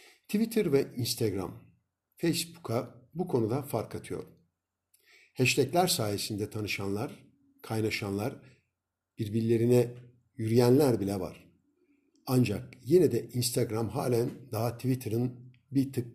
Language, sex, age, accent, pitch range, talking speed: Turkish, male, 60-79, native, 100-135 Hz, 95 wpm